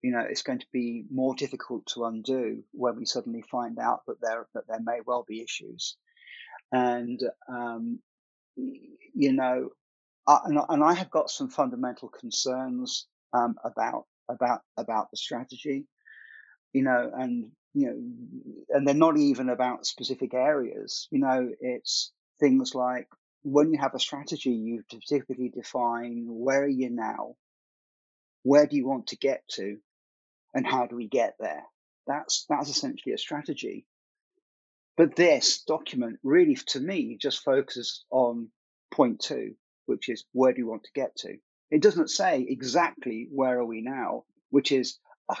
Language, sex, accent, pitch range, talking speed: English, male, British, 120-155 Hz, 155 wpm